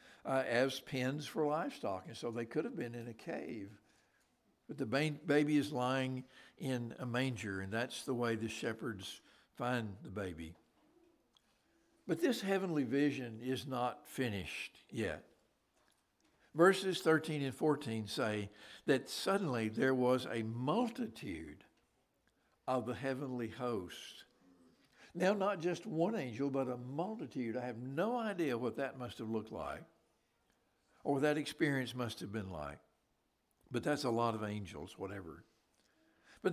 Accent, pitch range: American, 120-160 Hz